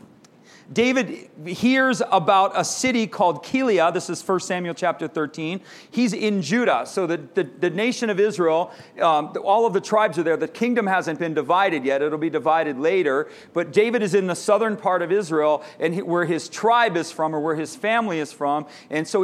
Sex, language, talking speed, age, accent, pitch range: male, English, 200 wpm, 40-59, American, 170-220 Hz